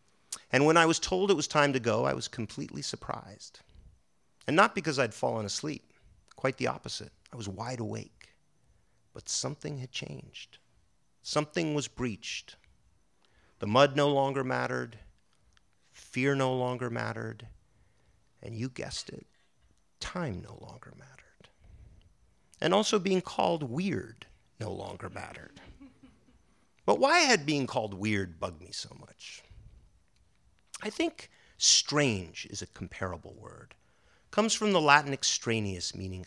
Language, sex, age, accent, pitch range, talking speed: English, male, 50-69, American, 100-150 Hz, 135 wpm